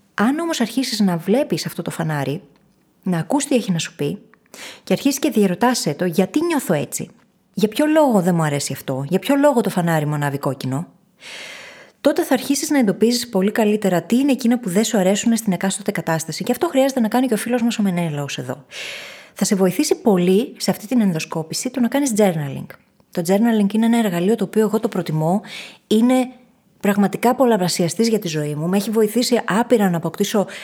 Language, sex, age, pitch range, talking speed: Greek, female, 20-39, 175-230 Hz, 200 wpm